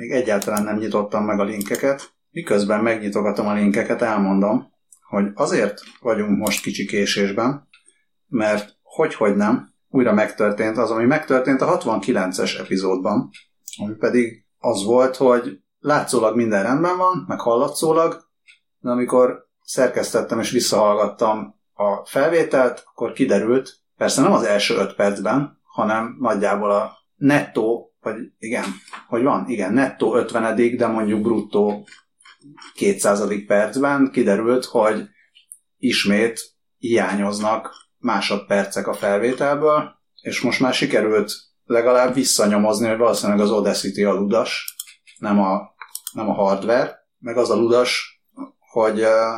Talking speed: 125 wpm